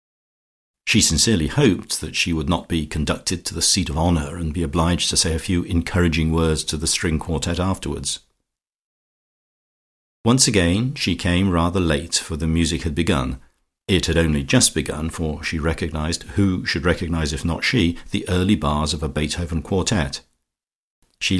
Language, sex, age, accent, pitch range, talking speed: English, male, 50-69, British, 80-90 Hz, 170 wpm